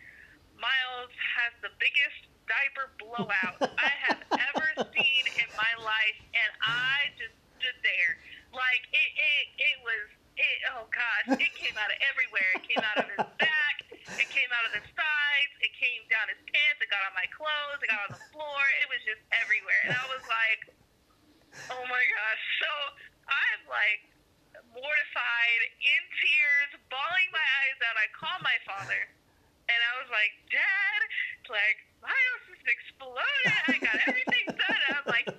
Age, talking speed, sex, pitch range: 20-39, 170 wpm, female, 255-395 Hz